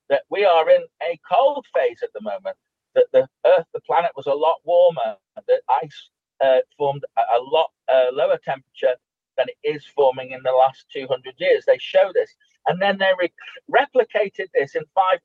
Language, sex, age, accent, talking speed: English, male, 40-59, British, 185 wpm